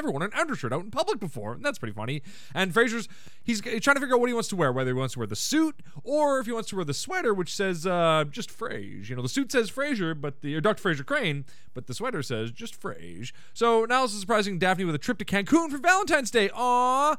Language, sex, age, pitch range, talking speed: English, male, 30-49, 150-250 Hz, 265 wpm